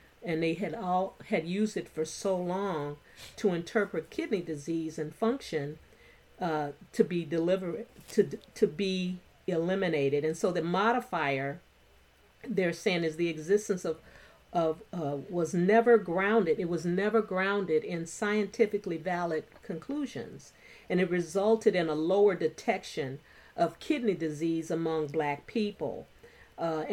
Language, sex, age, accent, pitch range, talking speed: English, female, 40-59, American, 160-205 Hz, 135 wpm